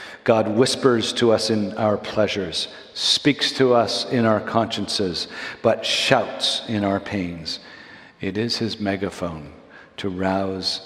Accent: American